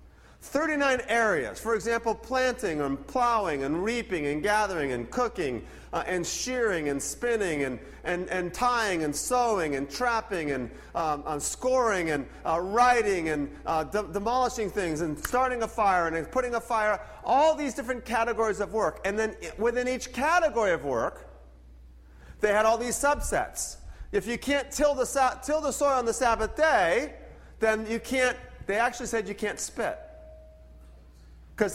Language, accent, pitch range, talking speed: English, American, 155-240 Hz, 165 wpm